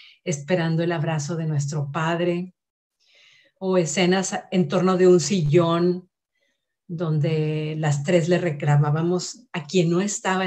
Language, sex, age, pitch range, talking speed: Spanish, female, 50-69, 160-190 Hz, 125 wpm